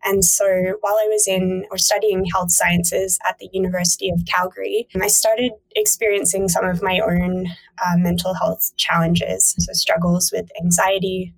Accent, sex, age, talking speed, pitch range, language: American, female, 10-29, 160 wpm, 175-205 Hz, English